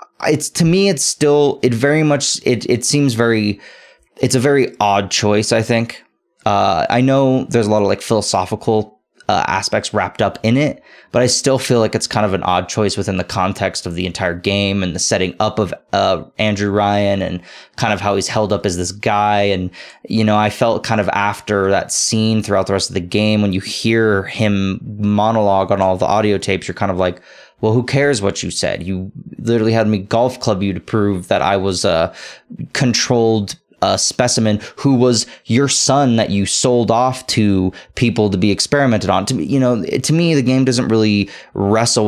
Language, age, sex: English, 20-39, male